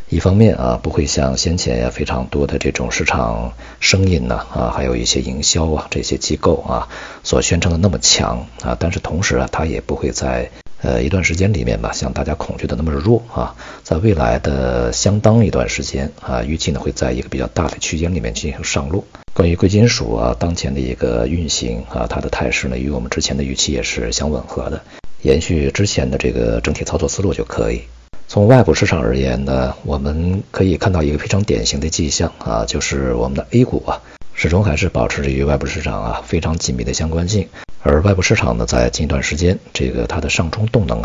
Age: 50-69